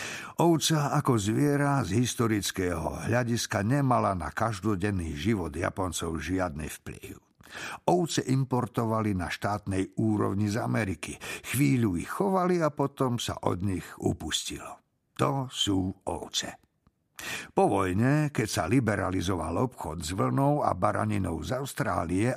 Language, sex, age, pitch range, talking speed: Slovak, male, 60-79, 95-130 Hz, 120 wpm